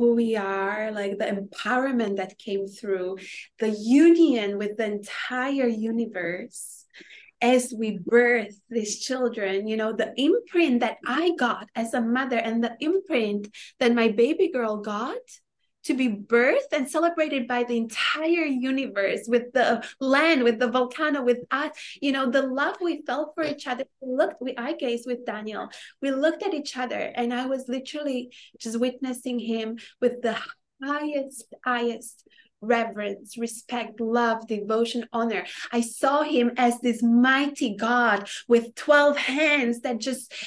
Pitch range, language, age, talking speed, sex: 220-270 Hz, English, 20-39, 155 wpm, female